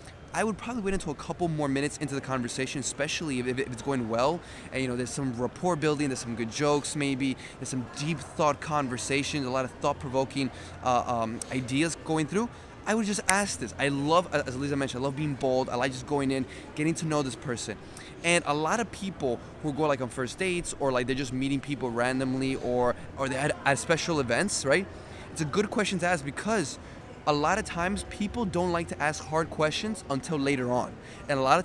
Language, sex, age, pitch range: English, male, 20-39, 130-170 Hz